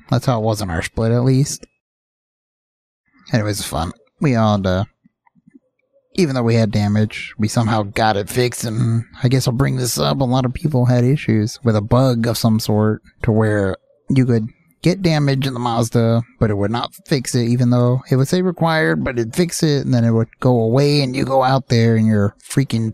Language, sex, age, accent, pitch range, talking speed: English, male, 30-49, American, 110-130 Hz, 220 wpm